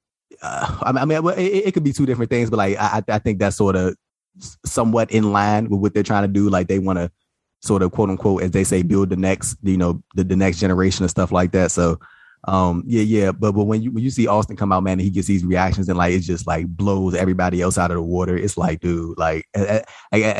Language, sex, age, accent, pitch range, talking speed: English, male, 30-49, American, 90-105 Hz, 255 wpm